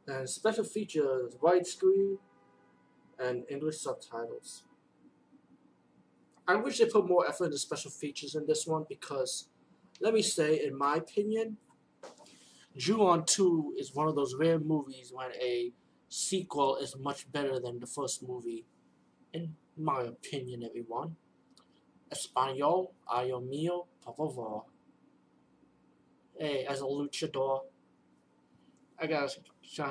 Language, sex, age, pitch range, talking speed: English, male, 20-39, 135-185 Hz, 120 wpm